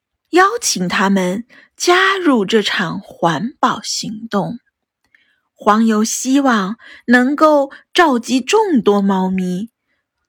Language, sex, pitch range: Chinese, female, 195-285 Hz